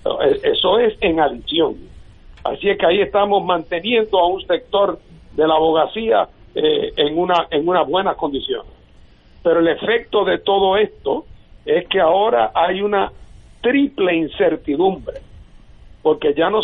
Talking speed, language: 140 wpm, Spanish